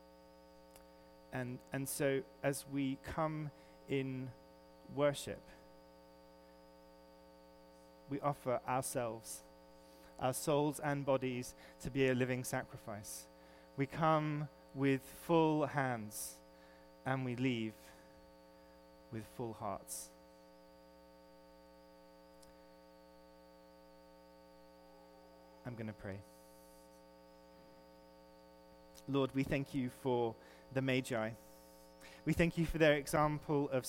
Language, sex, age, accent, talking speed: English, male, 30-49, British, 85 wpm